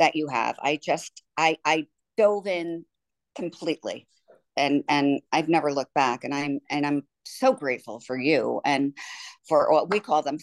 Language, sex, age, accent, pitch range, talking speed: English, female, 50-69, American, 140-180 Hz, 165 wpm